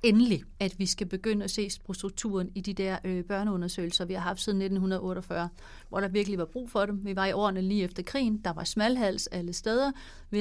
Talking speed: 215 wpm